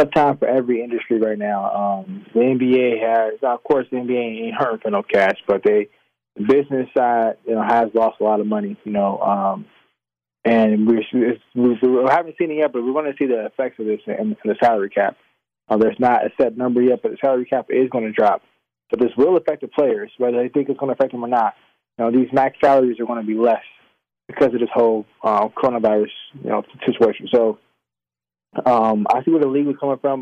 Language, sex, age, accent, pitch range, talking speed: English, male, 20-39, American, 110-130 Hz, 240 wpm